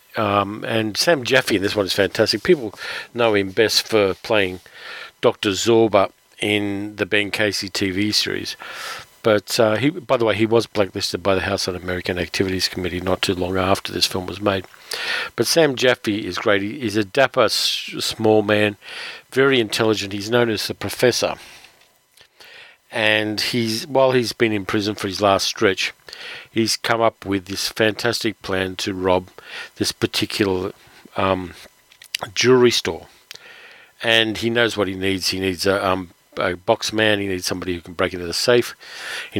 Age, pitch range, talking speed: 50-69, 95-110 Hz, 165 wpm